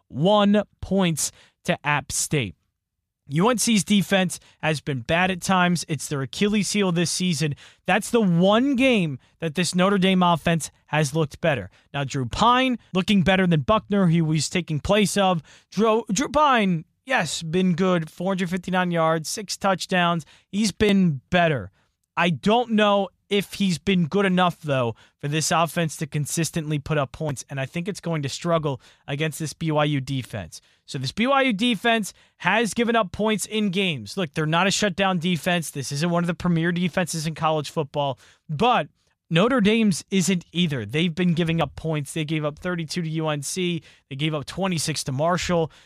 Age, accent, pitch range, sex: 20-39, American, 155-195 Hz, male